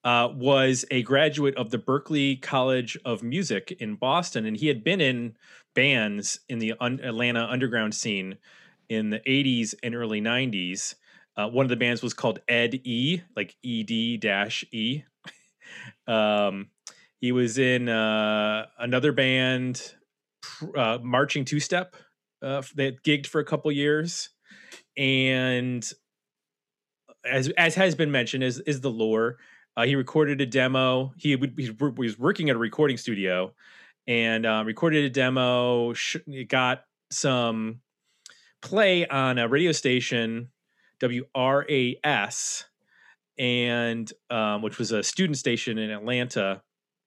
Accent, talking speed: American, 135 wpm